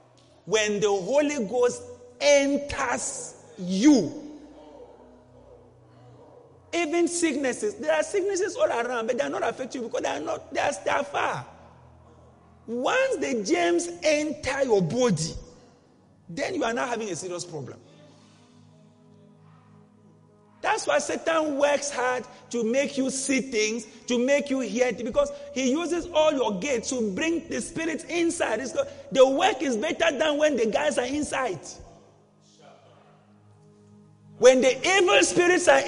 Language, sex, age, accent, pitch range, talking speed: English, male, 40-59, Nigerian, 230-315 Hz, 135 wpm